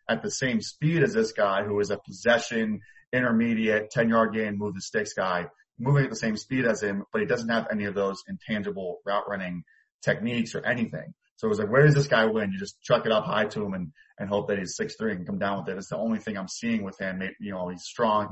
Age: 30-49